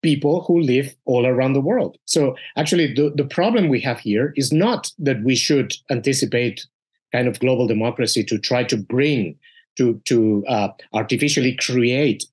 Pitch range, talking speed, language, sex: 120-155 Hz, 165 wpm, English, male